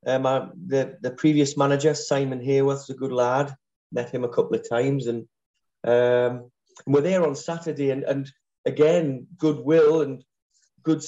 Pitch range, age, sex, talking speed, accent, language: 125-150 Hz, 30-49, male, 160 wpm, British, English